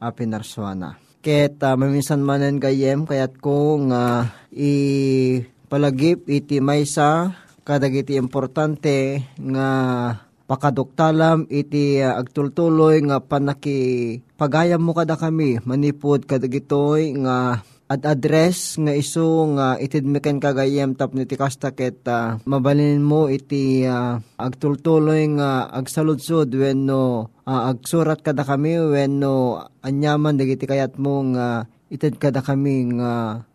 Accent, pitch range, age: native, 130-155 Hz, 20-39